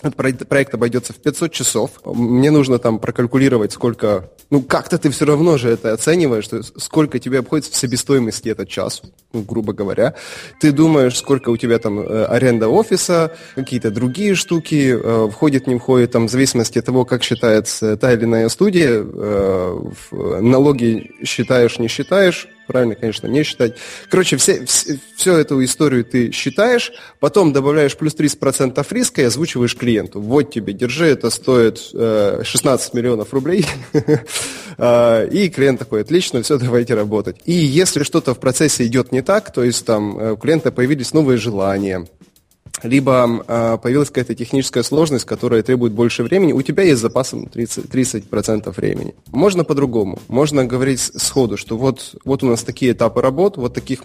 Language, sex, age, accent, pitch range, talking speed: Russian, male, 20-39, native, 115-145 Hz, 155 wpm